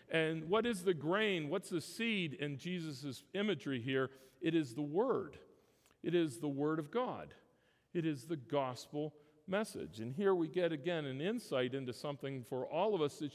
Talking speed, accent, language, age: 185 wpm, American, English, 50-69